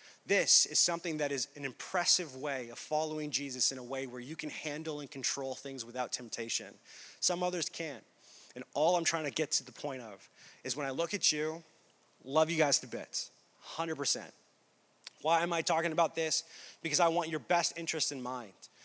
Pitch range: 130-165 Hz